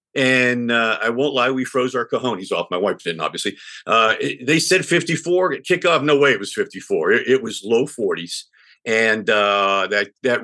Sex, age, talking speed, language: male, 50-69, 190 wpm, English